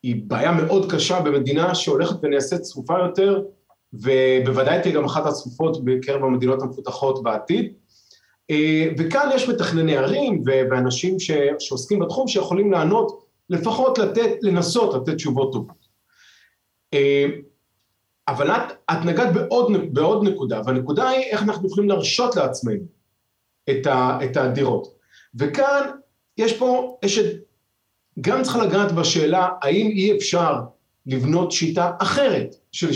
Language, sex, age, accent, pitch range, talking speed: Hebrew, male, 40-59, native, 135-195 Hz, 115 wpm